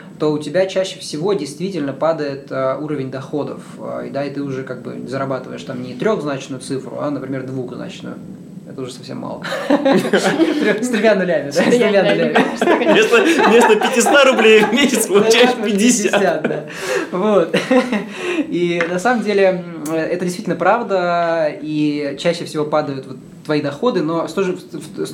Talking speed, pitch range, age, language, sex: 130 wpm, 145-185 Hz, 20-39, Russian, male